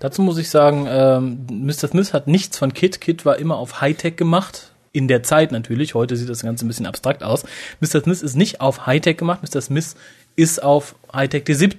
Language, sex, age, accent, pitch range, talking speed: German, male, 30-49, German, 125-160 Hz, 215 wpm